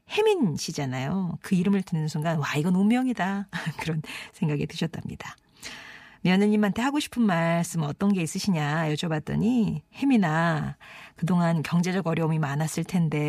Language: Korean